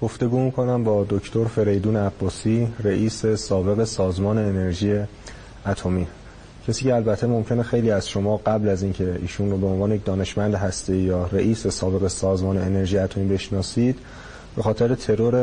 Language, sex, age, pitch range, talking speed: Persian, male, 30-49, 95-115 Hz, 150 wpm